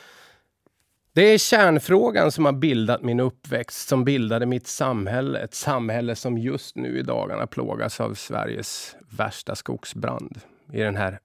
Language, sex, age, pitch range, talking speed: Swedish, male, 20-39, 105-130 Hz, 145 wpm